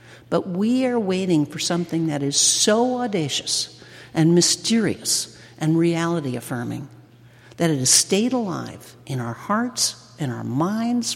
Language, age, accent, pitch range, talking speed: English, 60-79, American, 125-195 Hz, 135 wpm